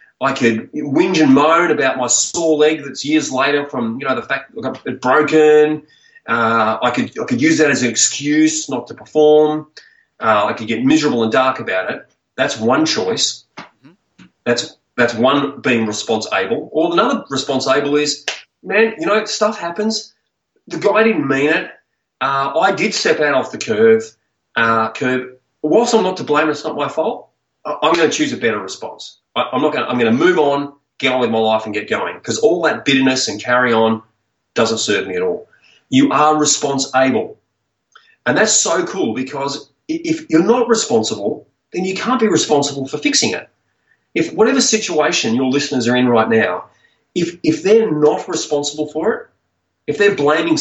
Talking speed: 185 wpm